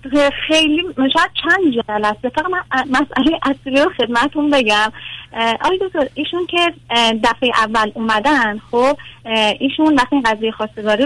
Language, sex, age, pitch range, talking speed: Persian, female, 30-49, 215-285 Hz, 115 wpm